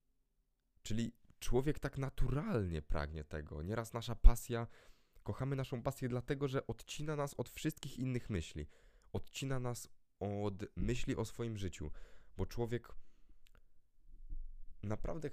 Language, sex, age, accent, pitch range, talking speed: Polish, male, 20-39, native, 95-125 Hz, 115 wpm